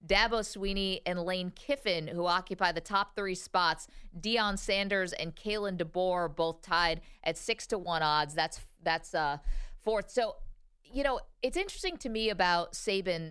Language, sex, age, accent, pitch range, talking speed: English, female, 40-59, American, 175-220 Hz, 160 wpm